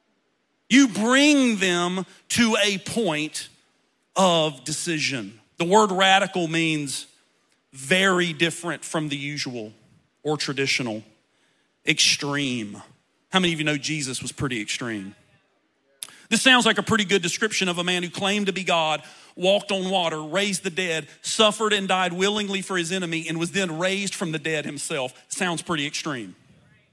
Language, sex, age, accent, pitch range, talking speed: English, male, 40-59, American, 160-220 Hz, 150 wpm